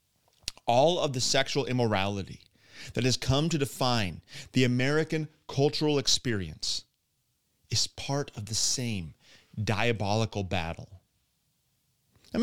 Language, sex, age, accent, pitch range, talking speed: English, male, 30-49, American, 105-150 Hz, 105 wpm